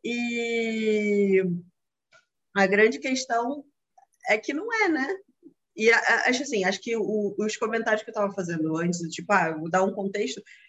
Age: 20-39